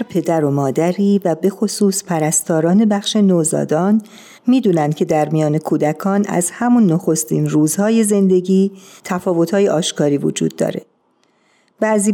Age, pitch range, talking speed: 50-69, 165-210 Hz, 120 wpm